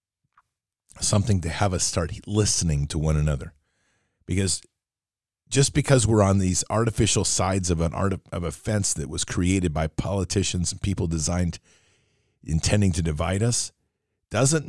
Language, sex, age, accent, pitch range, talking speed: English, male, 40-59, American, 85-105 Hz, 150 wpm